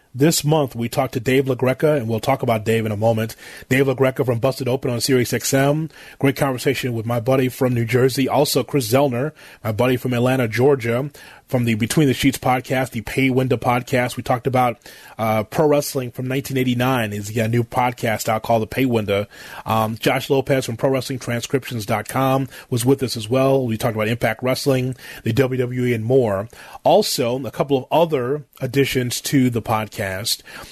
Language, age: English, 30-49